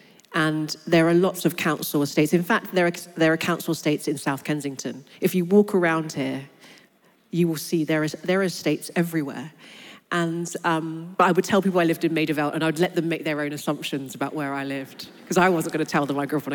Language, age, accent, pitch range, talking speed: English, 40-59, British, 155-185 Hz, 245 wpm